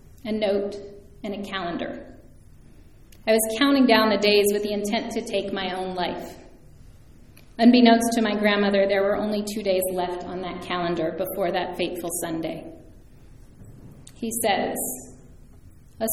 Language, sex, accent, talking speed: English, female, American, 145 wpm